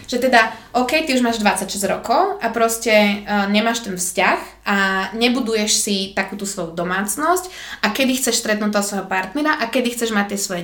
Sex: female